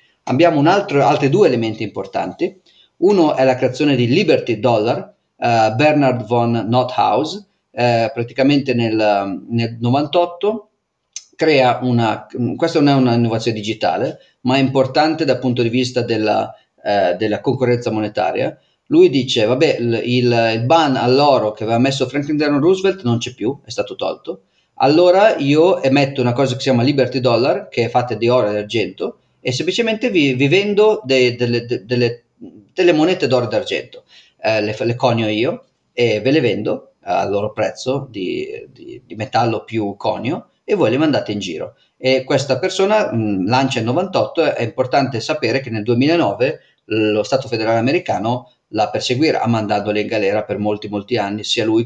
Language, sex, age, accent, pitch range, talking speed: Italian, male, 40-59, native, 115-145 Hz, 165 wpm